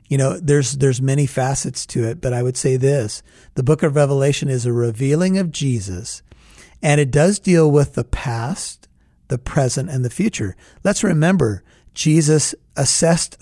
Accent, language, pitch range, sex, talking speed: American, English, 120-150 Hz, male, 170 wpm